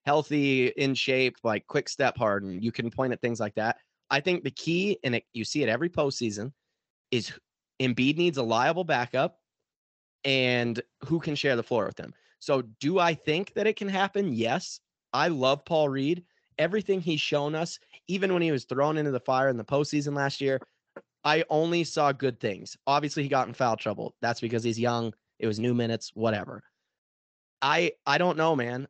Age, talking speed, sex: 30-49, 195 wpm, male